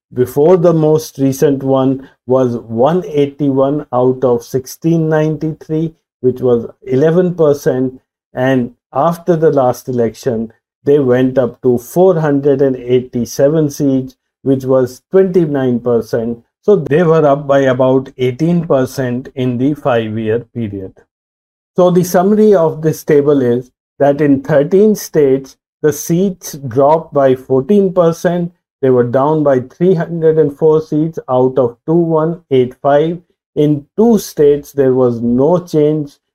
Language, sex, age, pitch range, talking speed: English, male, 50-69, 130-165 Hz, 115 wpm